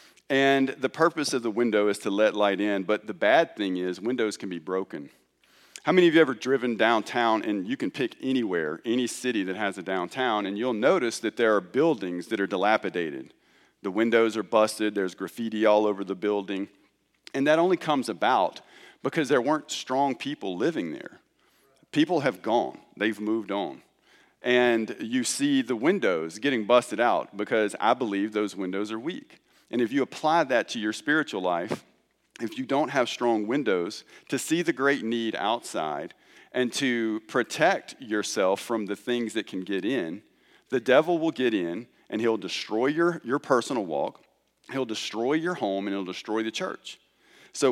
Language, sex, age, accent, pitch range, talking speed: English, male, 40-59, American, 100-130 Hz, 185 wpm